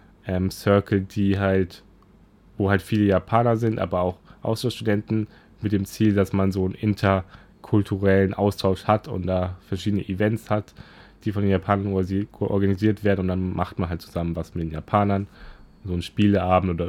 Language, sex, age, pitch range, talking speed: German, male, 10-29, 95-110 Hz, 165 wpm